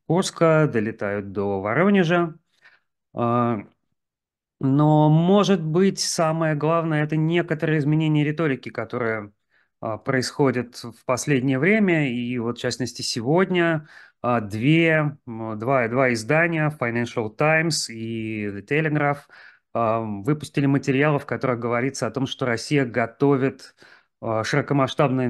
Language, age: Russian, 30-49